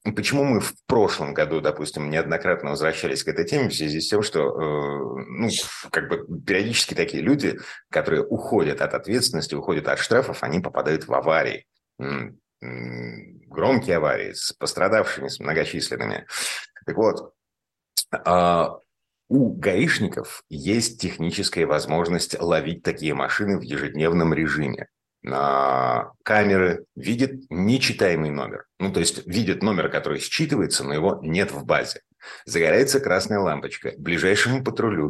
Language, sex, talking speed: Russian, male, 125 wpm